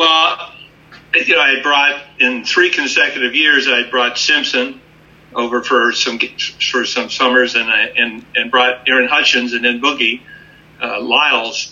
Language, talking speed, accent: English, 155 wpm, American